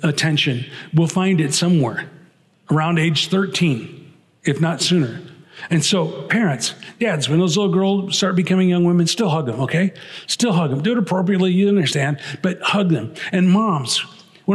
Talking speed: 170 wpm